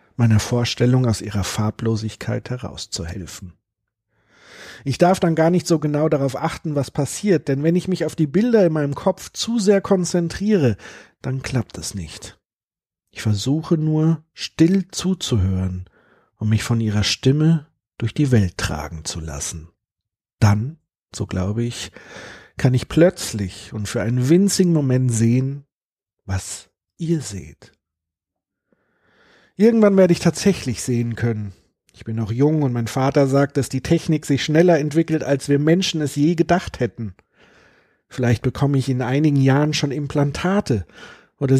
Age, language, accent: 50-69, German, German